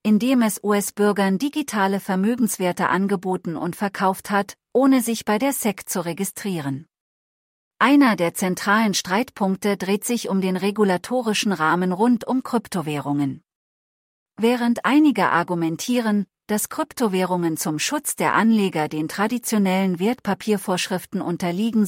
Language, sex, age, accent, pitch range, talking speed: English, female, 40-59, German, 180-225 Hz, 115 wpm